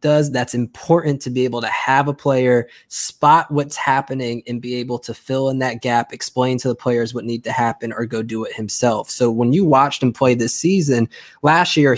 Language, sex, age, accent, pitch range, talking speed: English, male, 20-39, American, 120-145 Hz, 220 wpm